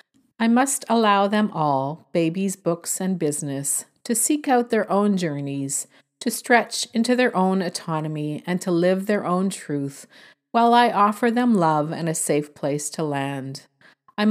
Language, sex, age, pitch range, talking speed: English, female, 40-59, 160-230 Hz, 165 wpm